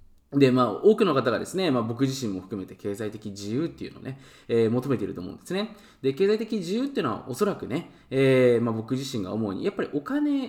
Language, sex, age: Japanese, male, 20-39